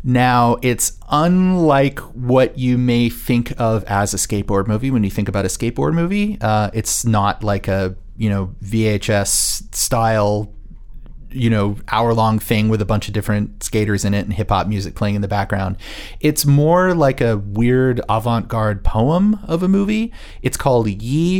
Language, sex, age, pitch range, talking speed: English, male, 30-49, 100-125 Hz, 175 wpm